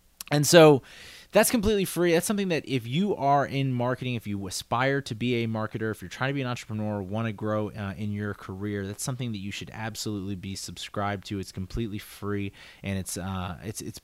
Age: 20-39